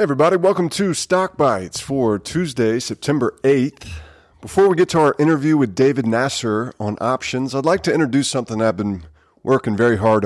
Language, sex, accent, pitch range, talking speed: English, male, American, 95-130 Hz, 180 wpm